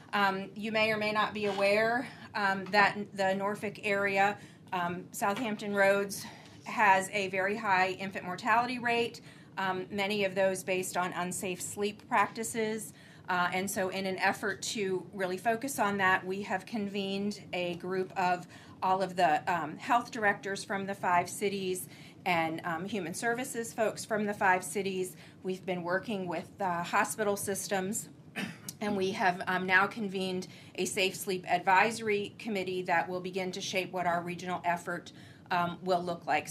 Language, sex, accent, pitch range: English, female, American, 180-205 Hz